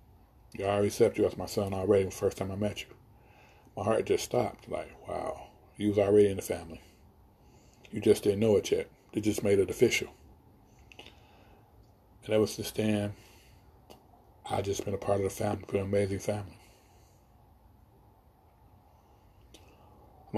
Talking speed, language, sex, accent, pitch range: 165 wpm, English, male, American, 100-110 Hz